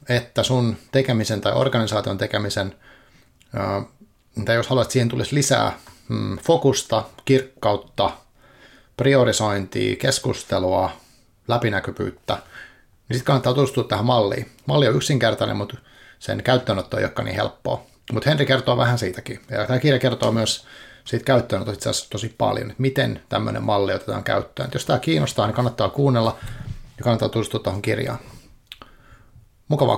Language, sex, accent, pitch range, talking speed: Finnish, male, native, 110-130 Hz, 140 wpm